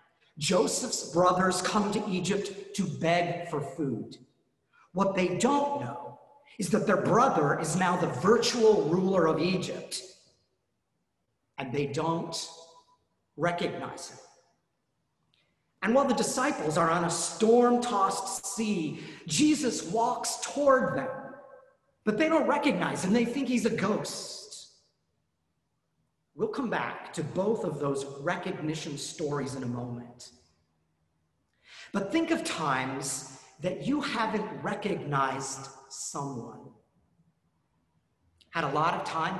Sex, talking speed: male, 120 wpm